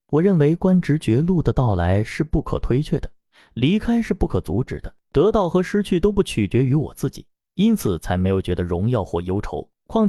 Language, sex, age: Chinese, male, 30-49